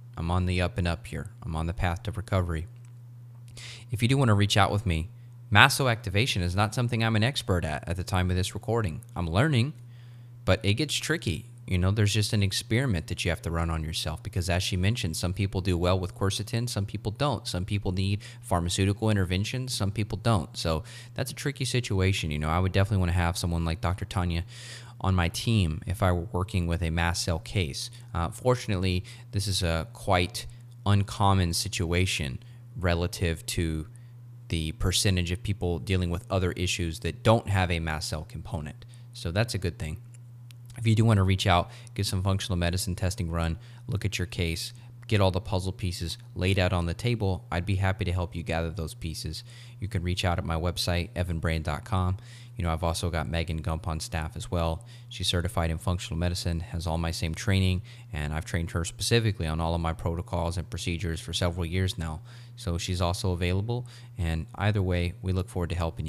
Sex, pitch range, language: male, 85-115 Hz, English